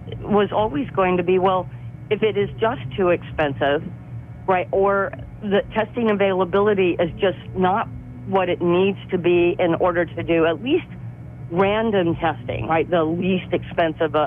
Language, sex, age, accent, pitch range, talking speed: English, female, 50-69, American, 150-195 Hz, 155 wpm